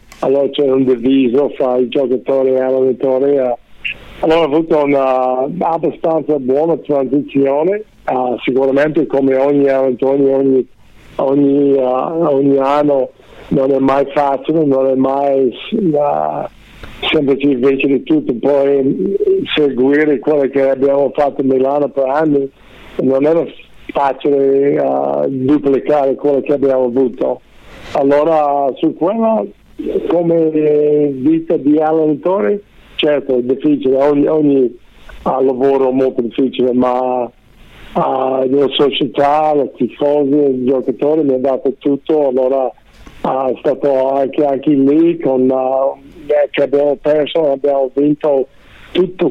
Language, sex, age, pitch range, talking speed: Italian, male, 50-69, 130-150 Hz, 125 wpm